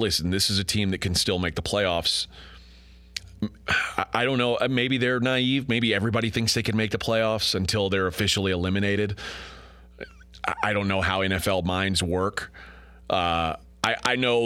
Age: 30-49